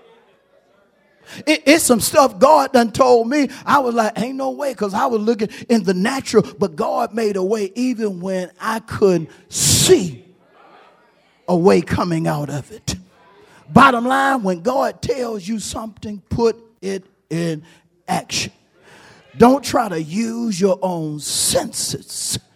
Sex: male